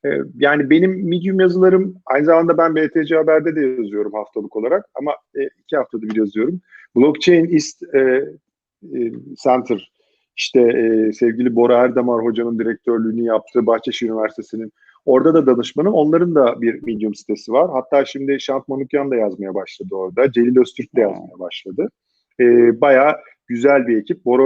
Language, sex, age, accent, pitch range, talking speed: Turkish, male, 40-59, native, 115-155 Hz, 140 wpm